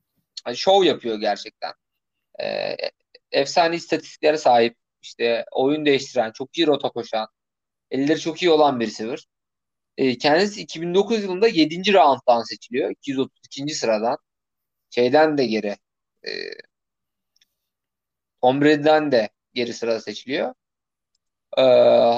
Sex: male